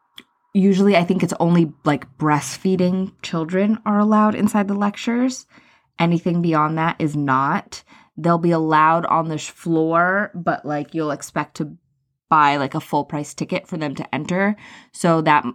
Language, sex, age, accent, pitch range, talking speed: English, female, 20-39, American, 160-205 Hz, 160 wpm